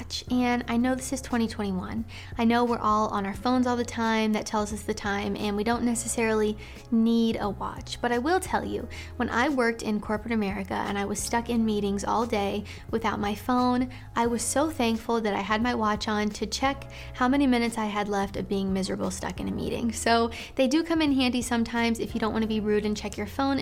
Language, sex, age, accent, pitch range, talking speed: English, female, 20-39, American, 205-245 Hz, 235 wpm